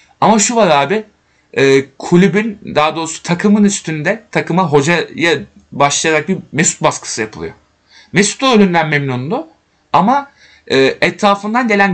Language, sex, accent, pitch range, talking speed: Turkish, male, native, 140-195 Hz, 115 wpm